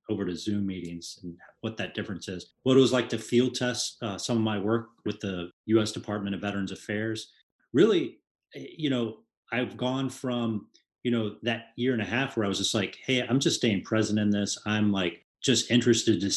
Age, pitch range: 30-49, 95-115 Hz